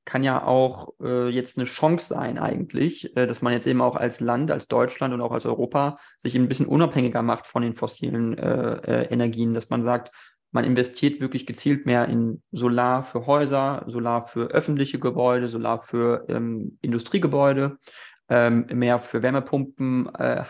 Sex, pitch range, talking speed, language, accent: male, 120-140 Hz, 175 wpm, German, German